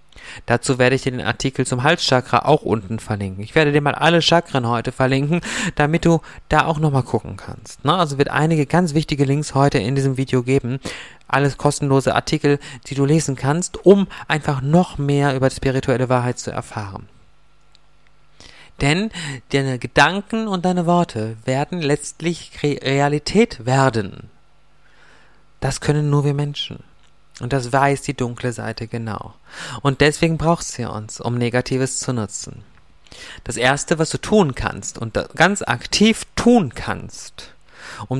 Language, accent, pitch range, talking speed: German, German, 120-155 Hz, 150 wpm